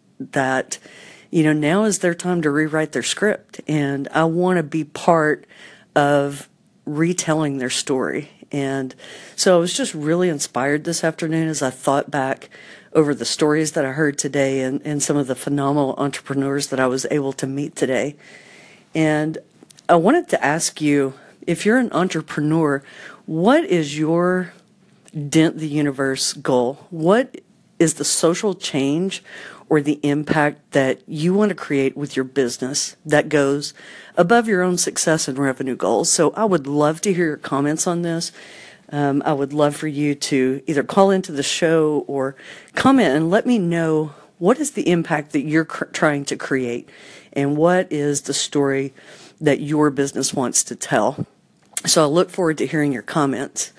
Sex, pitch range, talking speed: female, 140-175 Hz, 170 wpm